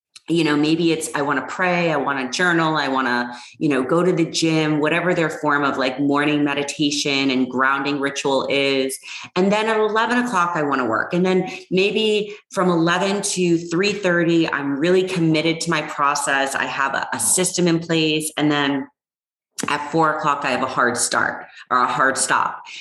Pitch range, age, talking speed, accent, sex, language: 140-175 Hz, 30-49, 195 wpm, American, female, English